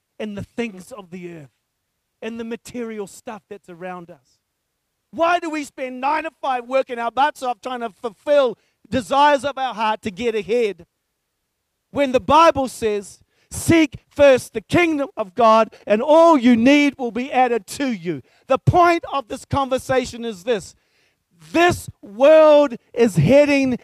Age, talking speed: 40-59, 160 wpm